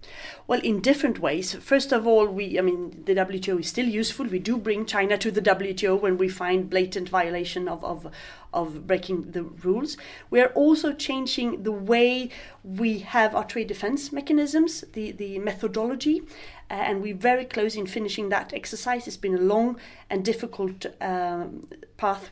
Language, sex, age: English, female, 30-49